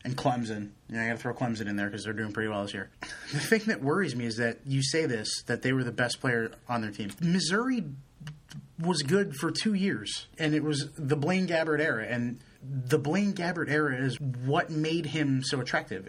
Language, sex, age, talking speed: English, male, 30-49, 230 wpm